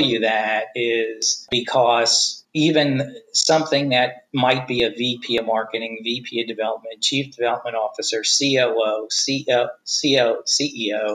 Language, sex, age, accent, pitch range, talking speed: English, male, 50-69, American, 115-135 Hz, 125 wpm